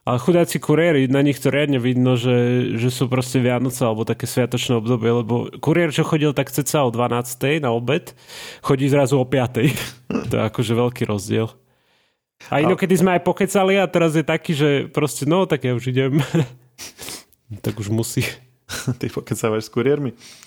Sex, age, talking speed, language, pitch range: male, 30-49, 175 wpm, Slovak, 120-145 Hz